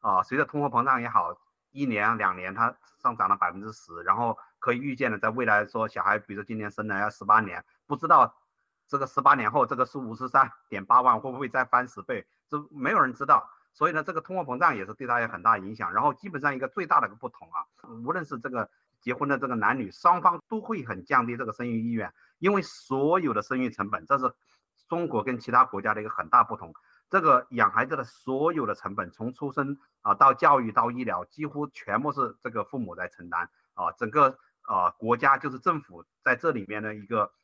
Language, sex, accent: Chinese, male, native